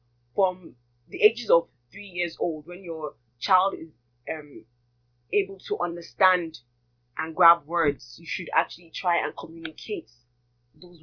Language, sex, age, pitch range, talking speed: English, female, 10-29, 120-200 Hz, 135 wpm